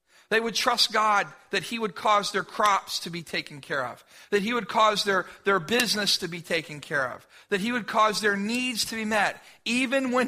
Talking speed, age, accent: 220 wpm, 50-69, American